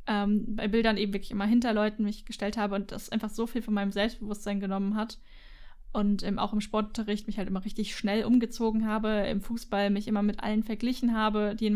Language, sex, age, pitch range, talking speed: German, female, 10-29, 205-225 Hz, 220 wpm